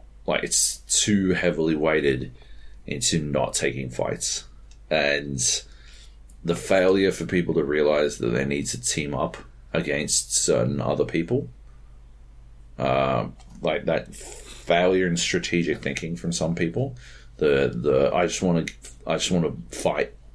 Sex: male